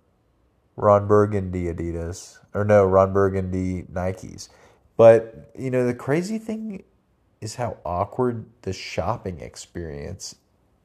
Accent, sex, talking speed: American, male, 110 wpm